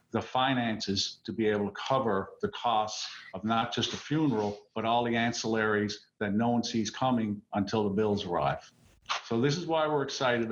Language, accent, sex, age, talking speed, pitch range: English, American, male, 50-69, 190 wpm, 115-140 Hz